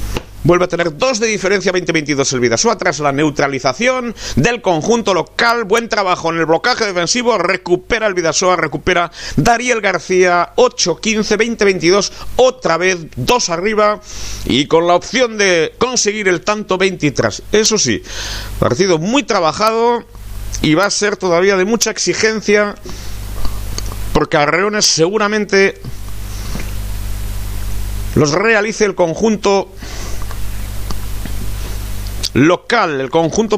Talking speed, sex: 115 wpm, male